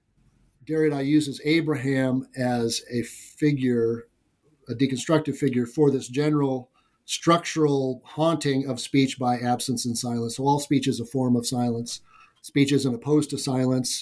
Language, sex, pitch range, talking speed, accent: English, male, 130-185 Hz, 140 wpm, American